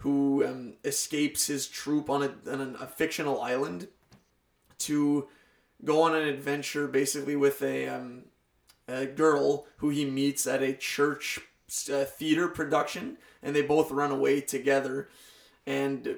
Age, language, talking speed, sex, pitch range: 20-39, English, 135 wpm, male, 135-145 Hz